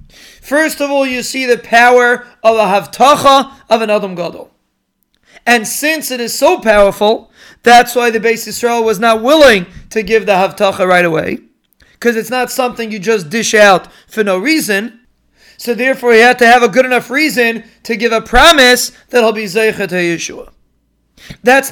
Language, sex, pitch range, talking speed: English, male, 225-260 Hz, 180 wpm